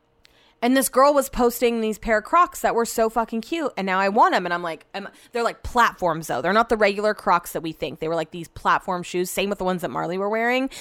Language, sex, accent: English, female, American